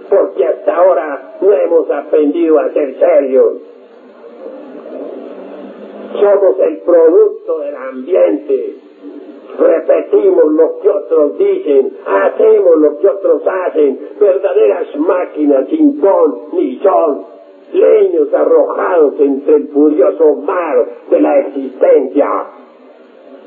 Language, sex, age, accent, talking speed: English, male, 50-69, Italian, 100 wpm